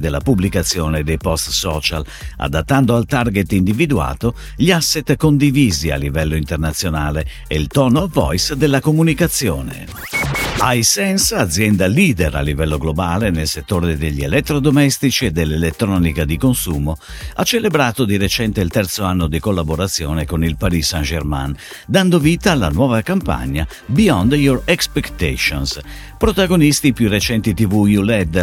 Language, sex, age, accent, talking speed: Italian, male, 50-69, native, 130 wpm